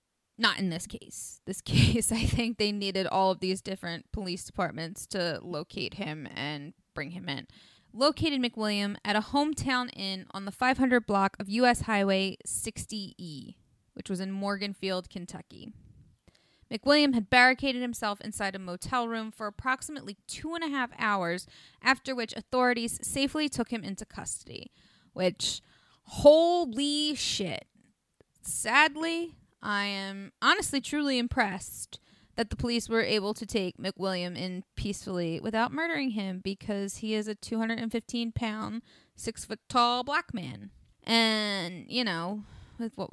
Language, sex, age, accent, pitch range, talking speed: English, female, 20-39, American, 190-245 Hz, 145 wpm